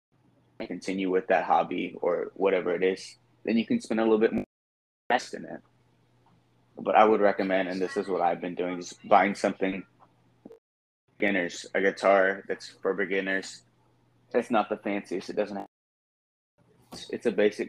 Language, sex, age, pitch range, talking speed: English, male, 20-39, 90-110 Hz, 165 wpm